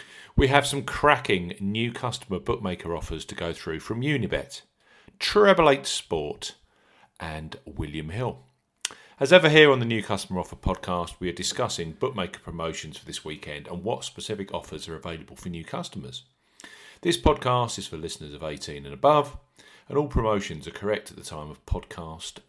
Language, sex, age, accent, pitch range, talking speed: English, male, 40-59, British, 85-130 Hz, 170 wpm